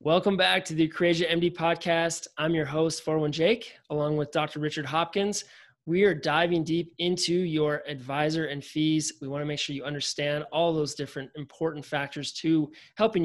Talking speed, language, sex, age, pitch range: 180 wpm, English, male, 20-39, 150-175 Hz